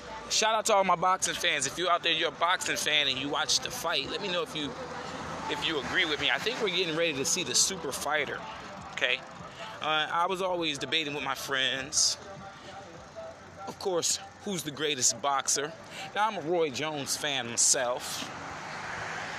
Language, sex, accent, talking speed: English, male, American, 190 wpm